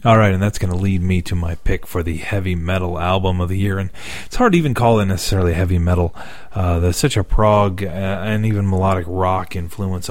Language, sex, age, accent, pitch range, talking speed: English, male, 30-49, American, 90-105 Hz, 230 wpm